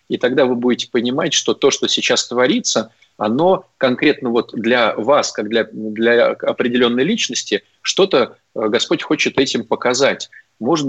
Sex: male